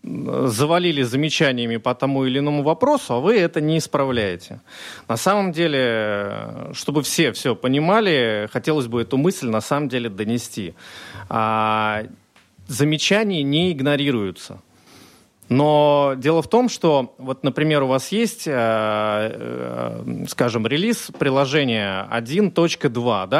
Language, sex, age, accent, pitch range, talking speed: Russian, male, 30-49, native, 115-150 Hz, 110 wpm